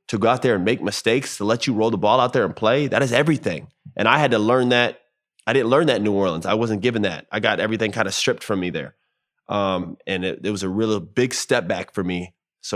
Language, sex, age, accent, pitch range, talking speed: English, male, 20-39, American, 95-115 Hz, 275 wpm